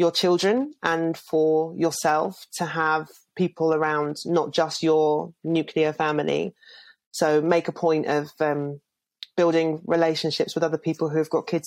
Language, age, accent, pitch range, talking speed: English, 30-49, British, 155-175 Hz, 150 wpm